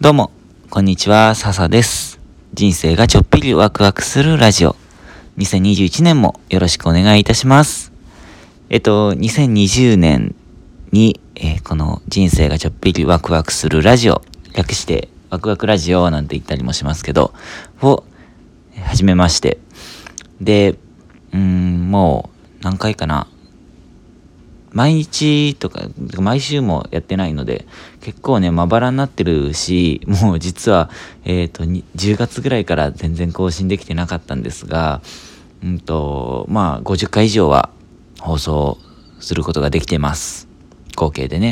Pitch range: 80-105 Hz